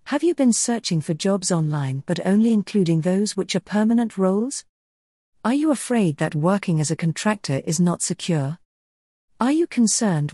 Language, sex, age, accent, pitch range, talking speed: English, female, 50-69, British, 150-220 Hz, 170 wpm